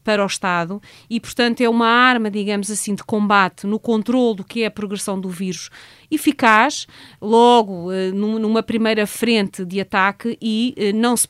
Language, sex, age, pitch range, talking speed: Portuguese, female, 30-49, 200-230 Hz, 175 wpm